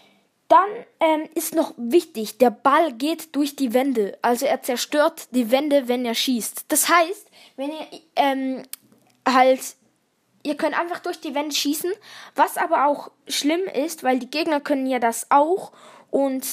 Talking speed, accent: 165 wpm, German